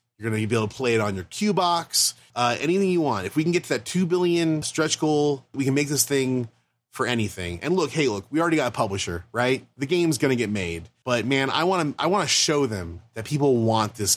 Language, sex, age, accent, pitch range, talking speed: English, male, 30-49, American, 115-155 Hz, 265 wpm